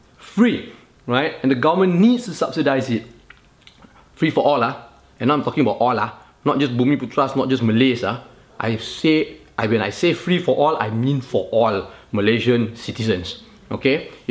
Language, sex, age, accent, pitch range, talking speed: English, male, 20-39, Malaysian, 125-165 Hz, 185 wpm